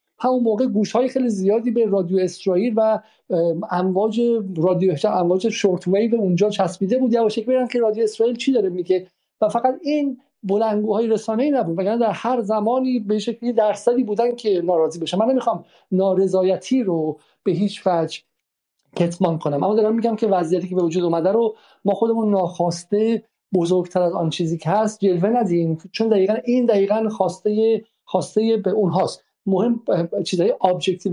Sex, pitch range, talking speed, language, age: male, 180-225 Hz, 170 wpm, Persian, 50-69